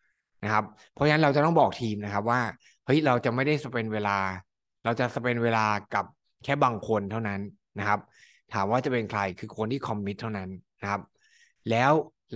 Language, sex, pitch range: Thai, male, 100-130 Hz